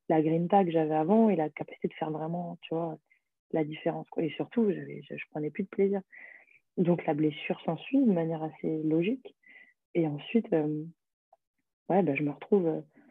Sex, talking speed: female, 190 wpm